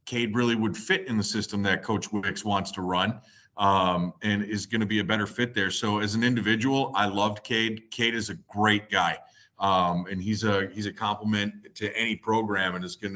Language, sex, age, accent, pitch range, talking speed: English, male, 30-49, American, 100-120 Hz, 220 wpm